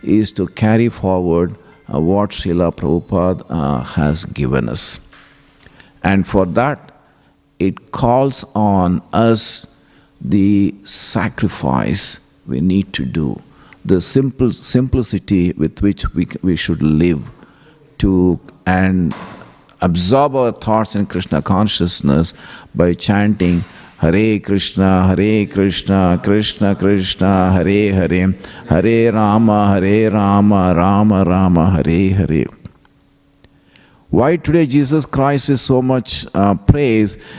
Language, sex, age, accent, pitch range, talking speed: English, male, 50-69, Indian, 90-110 Hz, 110 wpm